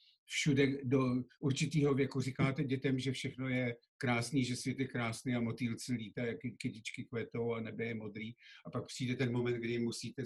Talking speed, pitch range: 180 wpm, 120-135 Hz